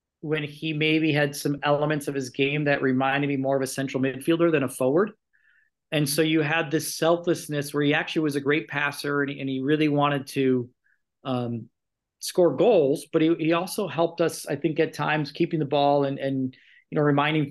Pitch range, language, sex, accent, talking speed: 140-160 Hz, English, male, American, 205 wpm